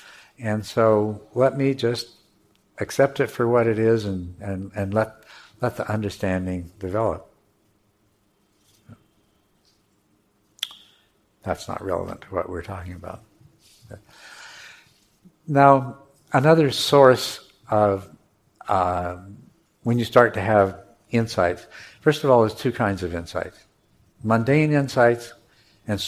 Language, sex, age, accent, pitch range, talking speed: English, male, 60-79, American, 95-115 Hz, 115 wpm